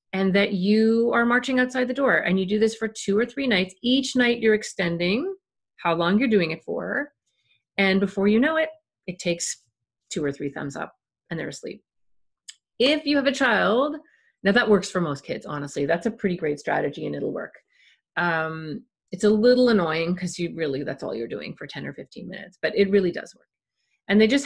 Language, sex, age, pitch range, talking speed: English, female, 30-49, 180-230 Hz, 215 wpm